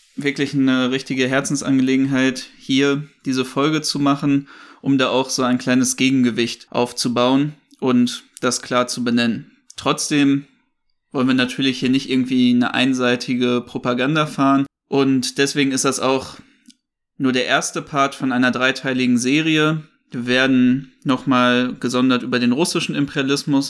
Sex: male